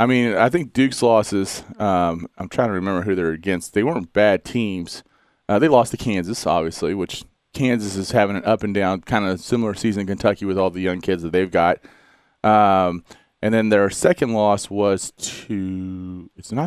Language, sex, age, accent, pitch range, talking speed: English, male, 30-49, American, 95-115 Hz, 200 wpm